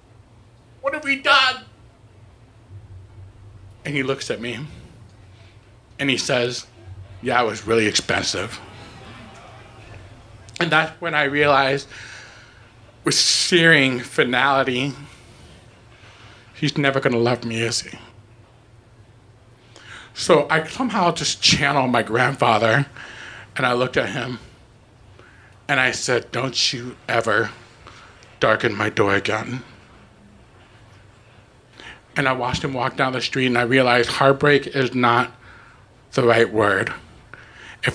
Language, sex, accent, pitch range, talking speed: English, male, American, 110-135 Hz, 115 wpm